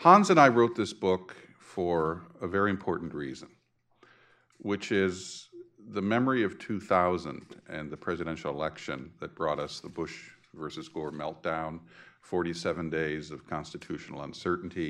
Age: 50-69